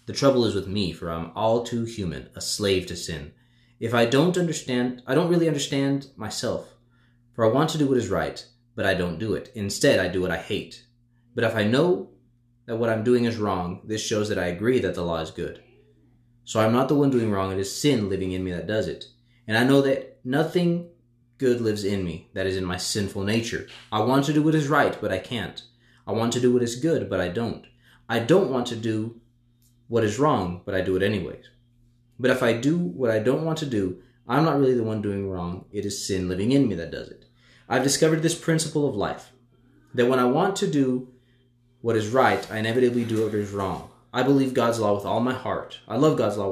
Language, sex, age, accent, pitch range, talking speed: English, male, 20-39, American, 100-125 Hz, 240 wpm